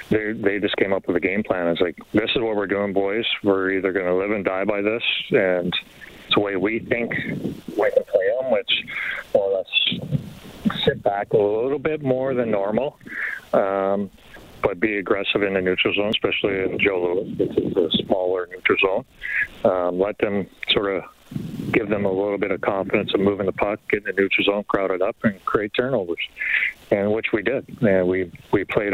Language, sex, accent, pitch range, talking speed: English, male, American, 95-110 Hz, 200 wpm